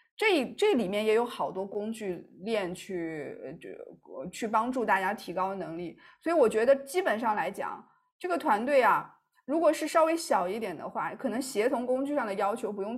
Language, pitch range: Chinese, 195-285 Hz